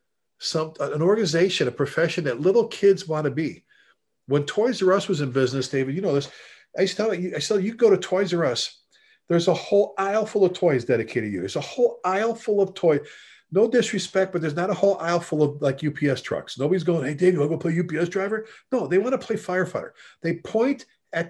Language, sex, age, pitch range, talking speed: English, male, 40-59, 155-205 Hz, 235 wpm